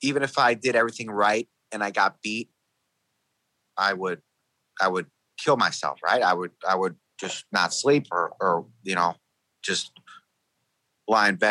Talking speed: 165 wpm